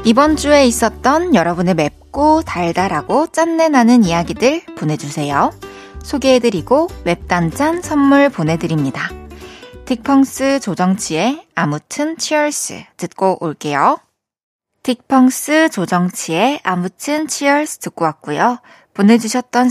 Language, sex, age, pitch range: Korean, female, 20-39, 170-265 Hz